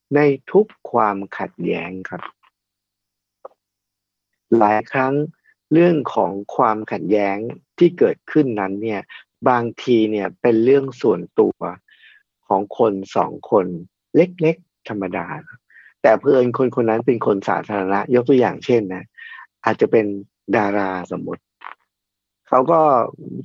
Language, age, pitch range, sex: Thai, 60-79, 105-155 Hz, male